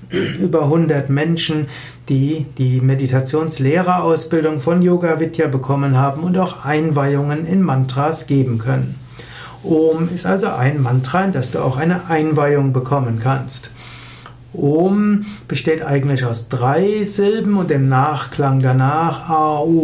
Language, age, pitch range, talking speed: German, 60-79, 130-165 Hz, 125 wpm